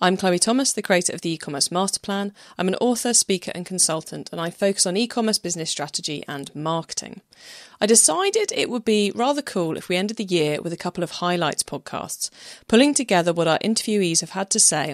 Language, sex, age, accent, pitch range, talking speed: English, female, 30-49, British, 160-205 Hz, 210 wpm